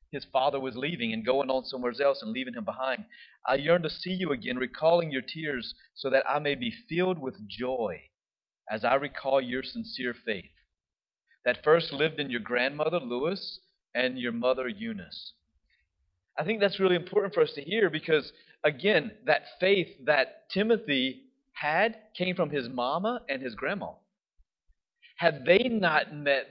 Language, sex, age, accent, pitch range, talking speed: English, male, 30-49, American, 130-185 Hz, 170 wpm